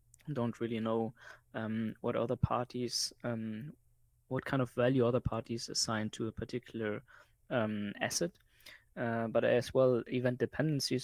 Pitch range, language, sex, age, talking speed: 115-130 Hz, English, male, 20-39, 140 wpm